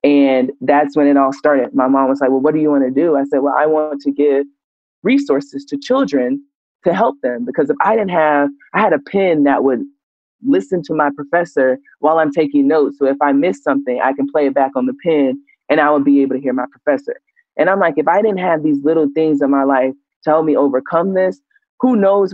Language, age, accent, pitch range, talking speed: English, 20-39, American, 140-175 Hz, 245 wpm